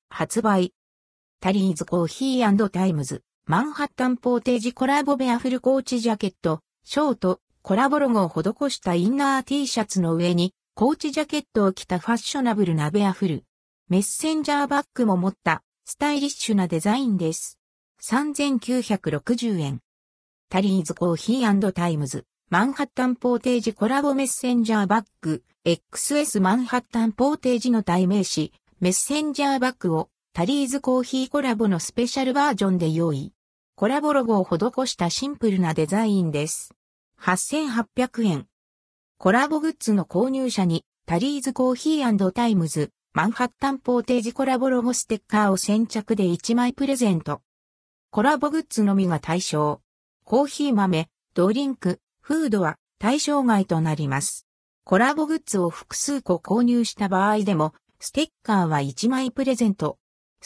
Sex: female